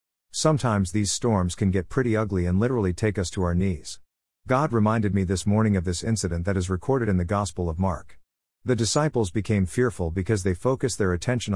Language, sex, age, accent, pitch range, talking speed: English, male, 50-69, American, 90-115 Hz, 200 wpm